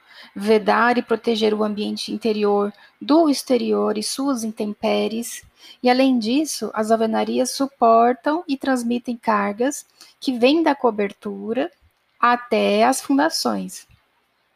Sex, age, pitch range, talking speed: female, 10-29, 210-245 Hz, 110 wpm